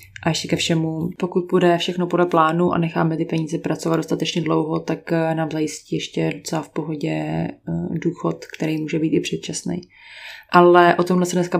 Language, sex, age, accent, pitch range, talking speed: Czech, female, 20-39, native, 160-185 Hz, 175 wpm